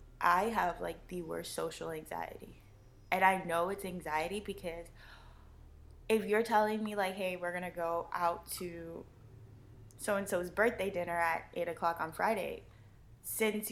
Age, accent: 10-29, American